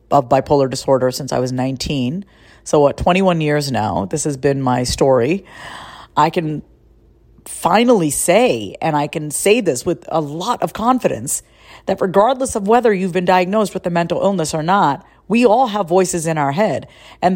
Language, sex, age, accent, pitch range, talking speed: English, female, 40-59, American, 160-220 Hz, 180 wpm